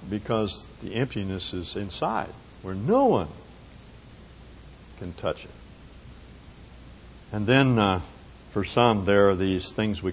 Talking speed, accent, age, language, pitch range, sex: 125 wpm, American, 60-79, English, 85-110 Hz, male